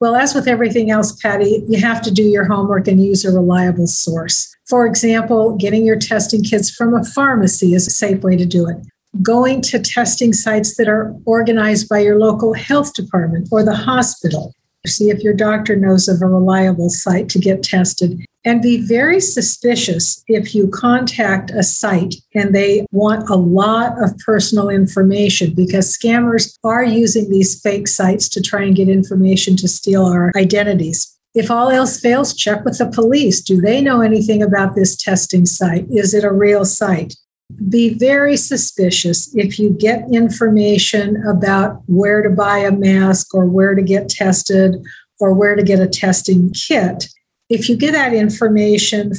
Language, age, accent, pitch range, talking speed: English, 50-69, American, 190-225 Hz, 175 wpm